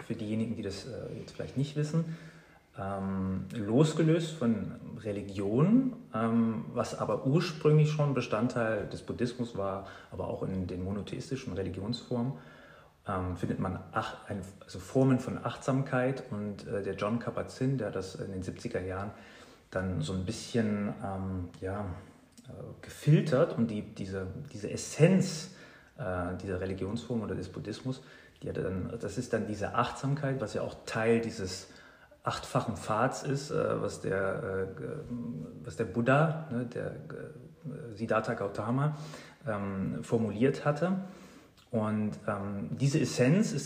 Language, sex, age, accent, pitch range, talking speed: German, male, 30-49, German, 100-140 Hz, 130 wpm